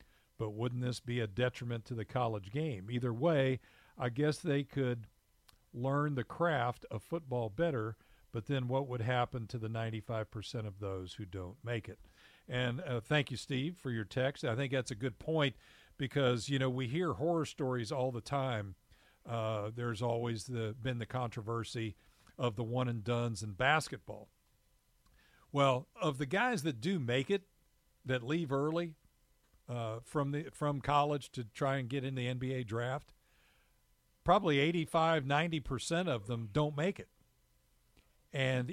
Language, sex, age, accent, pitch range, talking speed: English, male, 50-69, American, 115-145 Hz, 165 wpm